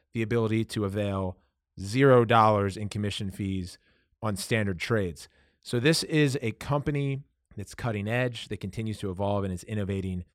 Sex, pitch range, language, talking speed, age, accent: male, 100-125 Hz, English, 150 wpm, 30-49, American